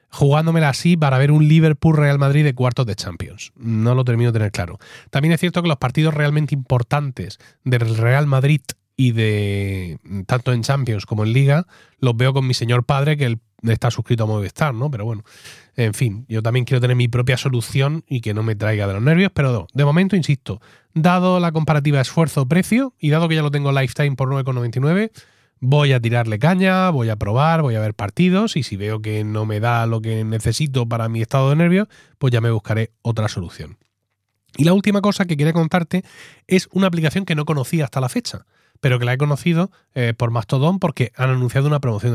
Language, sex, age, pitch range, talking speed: Spanish, male, 30-49, 115-155 Hz, 210 wpm